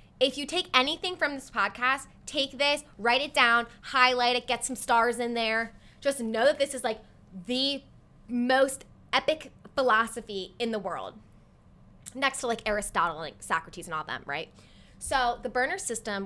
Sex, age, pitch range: female, 20-39, 195-255 Hz